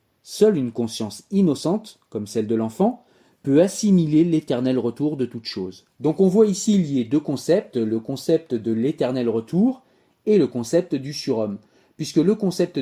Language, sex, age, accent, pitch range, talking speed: French, male, 30-49, French, 125-175 Hz, 165 wpm